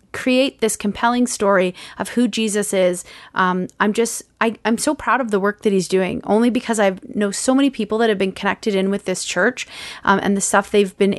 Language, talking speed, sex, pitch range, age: English, 225 wpm, female, 195-235 Hz, 30-49